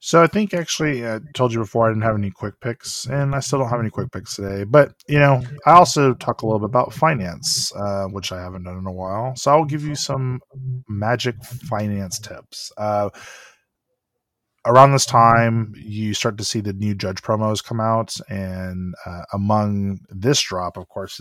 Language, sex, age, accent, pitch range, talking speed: English, male, 20-39, American, 95-115 Hz, 200 wpm